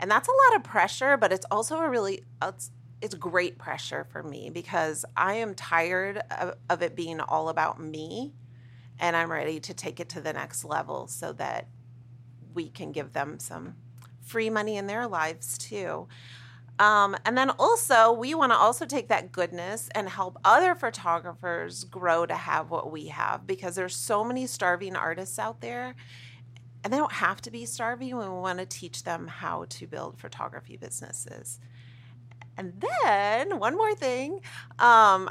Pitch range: 125-205 Hz